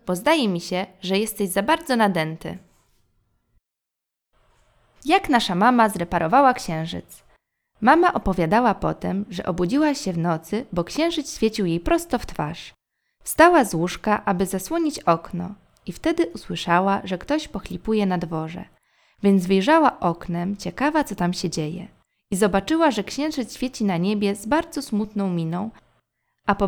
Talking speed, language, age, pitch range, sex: 145 wpm, Polish, 20-39, 190-295 Hz, female